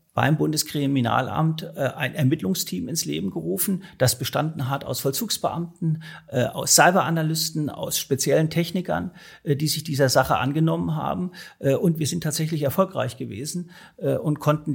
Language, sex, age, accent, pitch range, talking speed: German, male, 50-69, German, 135-165 Hz, 125 wpm